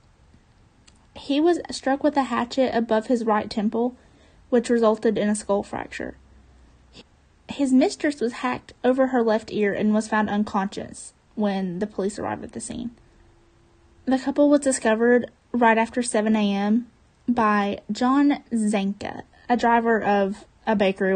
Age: 20-39